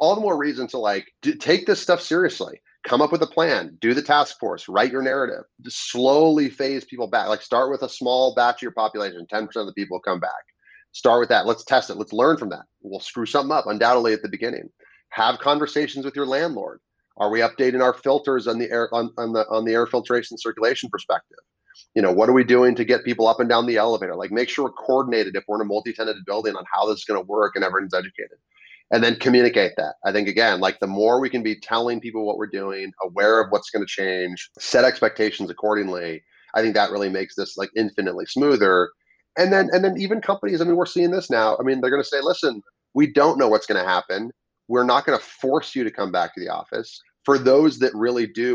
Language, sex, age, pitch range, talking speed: English, male, 30-49, 105-140 Hz, 245 wpm